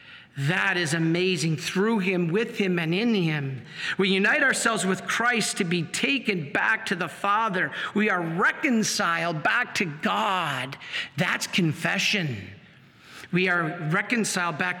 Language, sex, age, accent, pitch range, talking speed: English, male, 50-69, American, 180-245 Hz, 140 wpm